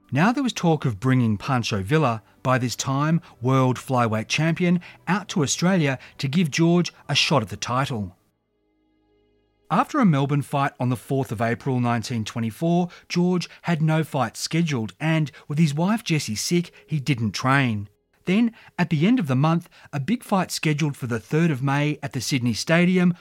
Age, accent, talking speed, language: 30-49, Australian, 180 wpm, English